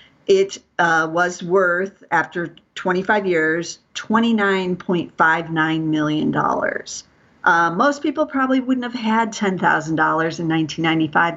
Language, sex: English, female